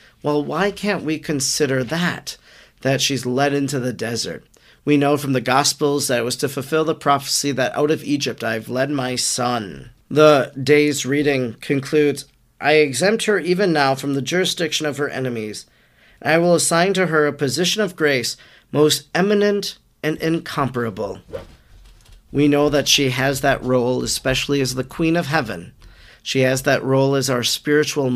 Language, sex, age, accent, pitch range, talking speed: English, male, 40-59, American, 125-150 Hz, 170 wpm